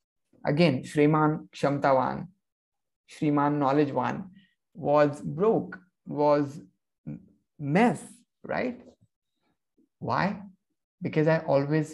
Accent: native